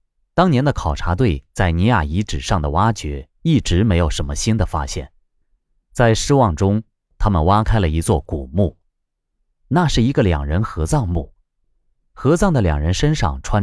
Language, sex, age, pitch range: Chinese, male, 30-49, 80-125 Hz